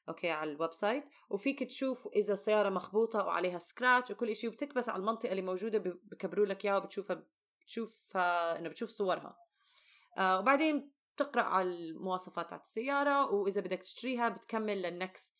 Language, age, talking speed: Arabic, 20-39, 150 wpm